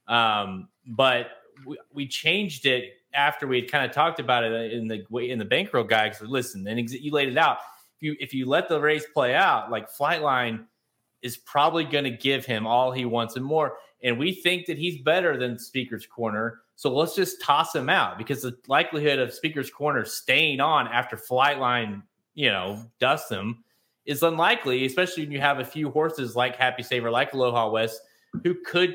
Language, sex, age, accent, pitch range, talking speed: English, male, 30-49, American, 120-155 Hz, 205 wpm